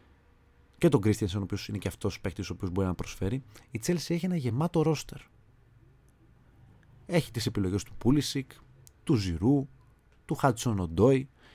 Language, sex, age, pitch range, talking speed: Greek, male, 30-49, 95-145 Hz, 160 wpm